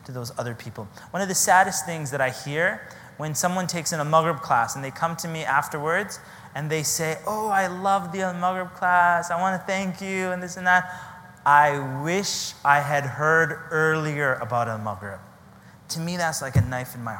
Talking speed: 205 wpm